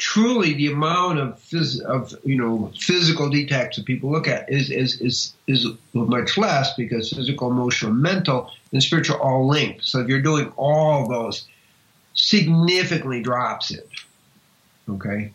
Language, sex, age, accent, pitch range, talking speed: English, male, 50-69, American, 115-145 Hz, 155 wpm